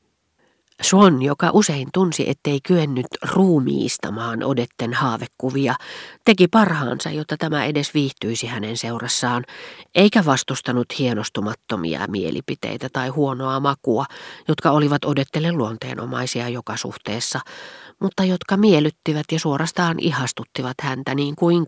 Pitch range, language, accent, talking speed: 120-150 Hz, Finnish, native, 110 wpm